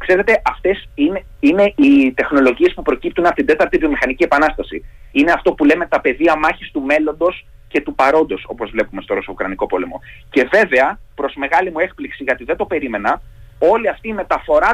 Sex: male